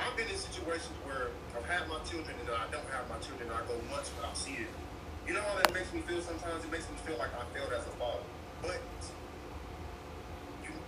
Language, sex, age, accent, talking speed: English, male, 30-49, American, 235 wpm